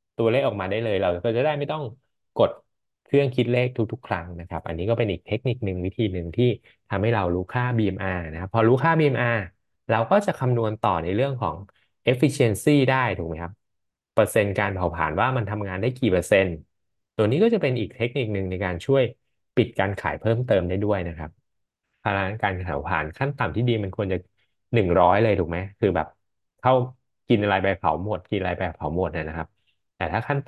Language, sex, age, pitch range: Thai, male, 20-39, 95-125 Hz